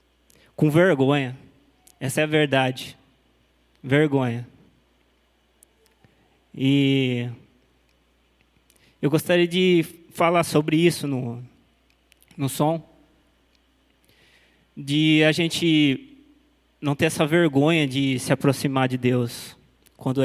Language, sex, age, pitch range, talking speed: Portuguese, male, 20-39, 130-170 Hz, 90 wpm